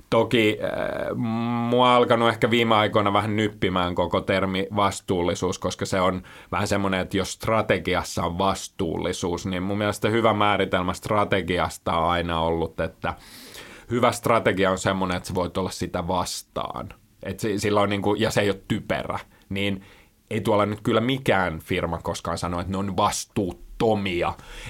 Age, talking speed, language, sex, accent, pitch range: 30-49, 155 wpm, Finnish, male, native, 90-115 Hz